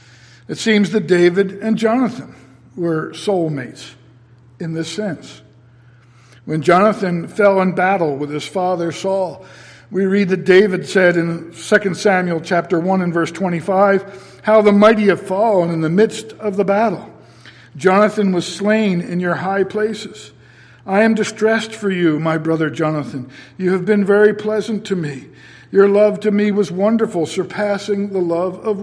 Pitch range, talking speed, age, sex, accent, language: 155-205 Hz, 160 wpm, 50-69, male, American, English